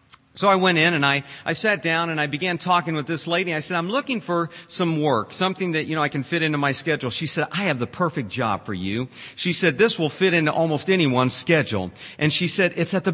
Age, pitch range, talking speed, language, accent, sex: 50-69, 140-185 Hz, 260 wpm, English, American, male